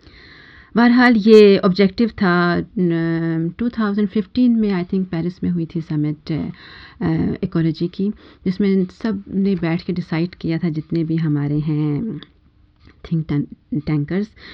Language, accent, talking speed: Hindi, native, 120 wpm